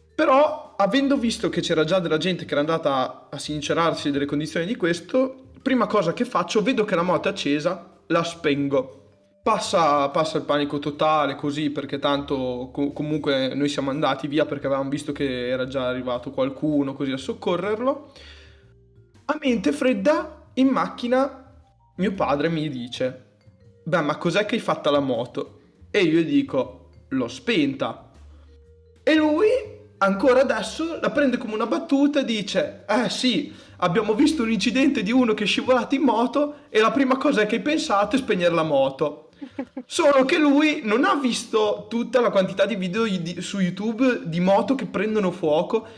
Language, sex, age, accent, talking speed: Italian, male, 20-39, native, 170 wpm